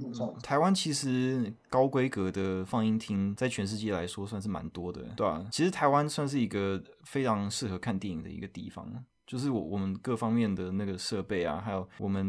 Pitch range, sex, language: 95-120 Hz, male, Chinese